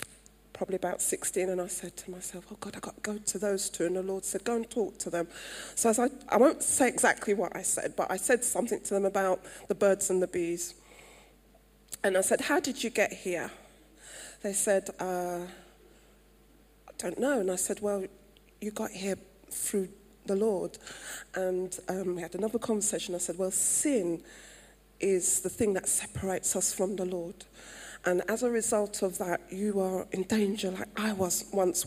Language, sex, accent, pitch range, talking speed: English, female, British, 180-210 Hz, 195 wpm